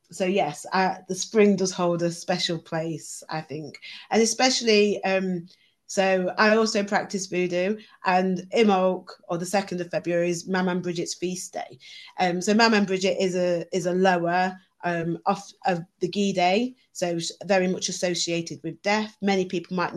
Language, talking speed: English, 170 wpm